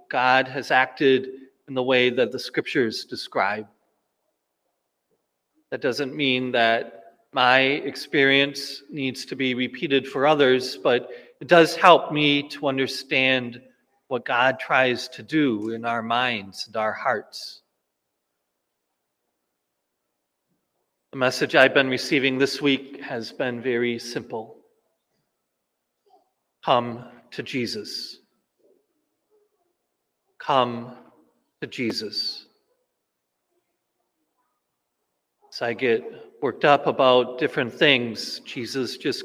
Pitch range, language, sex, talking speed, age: 95-140 Hz, English, male, 100 wpm, 40-59